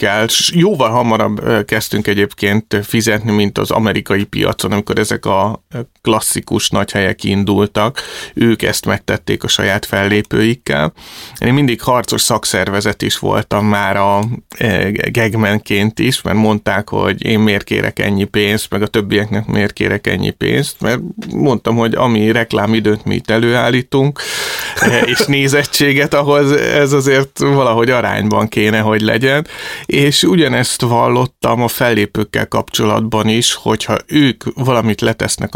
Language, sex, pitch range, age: Hungarian, male, 105-125 Hz, 30-49